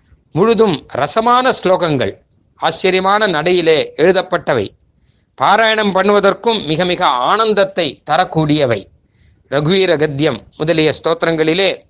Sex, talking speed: male, 80 wpm